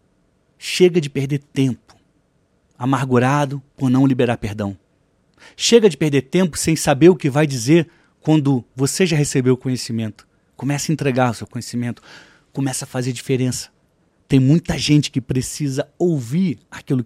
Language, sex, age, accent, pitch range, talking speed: Portuguese, male, 30-49, Brazilian, 125-155 Hz, 150 wpm